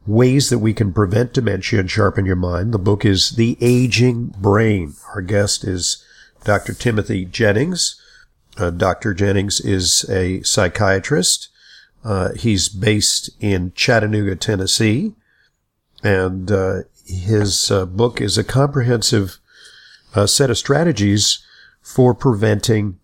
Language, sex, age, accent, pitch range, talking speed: English, male, 50-69, American, 100-125 Hz, 125 wpm